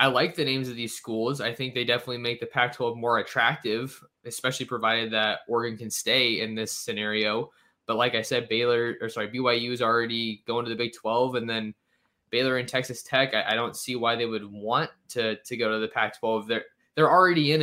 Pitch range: 110-125 Hz